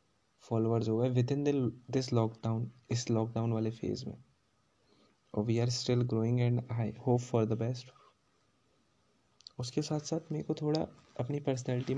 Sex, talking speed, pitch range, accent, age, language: male, 105 wpm, 115-130 Hz, native, 20-39, Hindi